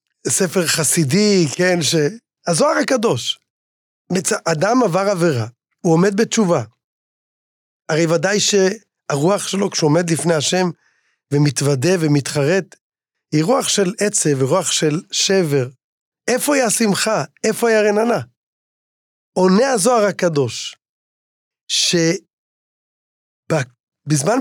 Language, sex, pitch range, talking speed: Hebrew, male, 155-200 Hz, 100 wpm